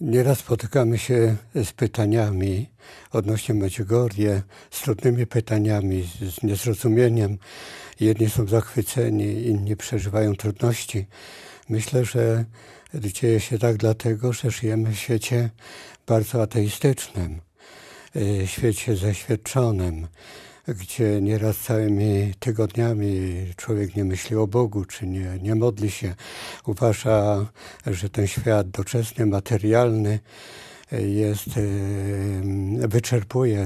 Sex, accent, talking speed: male, native, 95 wpm